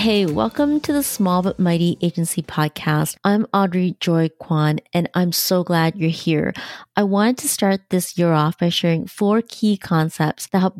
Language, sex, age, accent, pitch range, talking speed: English, female, 30-49, American, 160-195 Hz, 185 wpm